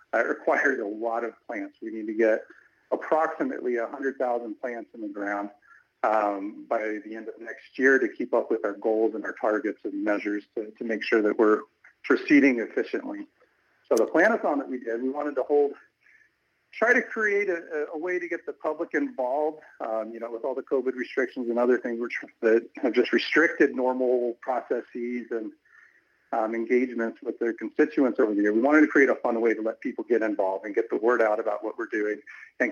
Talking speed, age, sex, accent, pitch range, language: 205 wpm, 50-69, male, American, 115-175 Hz, English